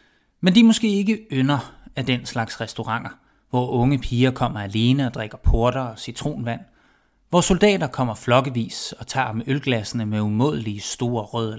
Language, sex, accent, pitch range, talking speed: Danish, male, native, 115-140 Hz, 160 wpm